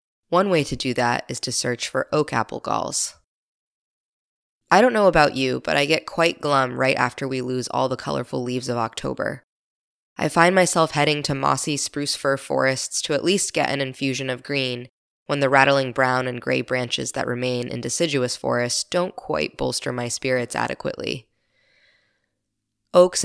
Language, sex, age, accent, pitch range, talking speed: English, female, 20-39, American, 130-170 Hz, 175 wpm